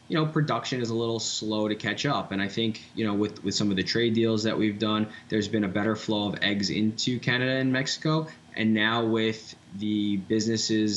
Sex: male